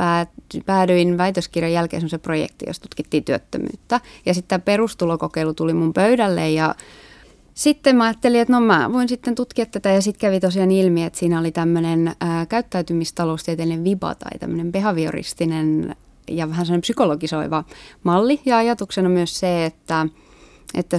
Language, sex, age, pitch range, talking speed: Finnish, female, 30-49, 160-195 Hz, 145 wpm